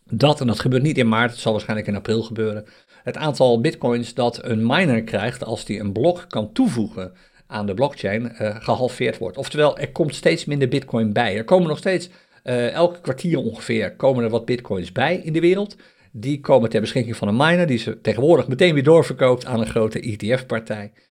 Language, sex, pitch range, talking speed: Dutch, male, 110-150 Hz, 205 wpm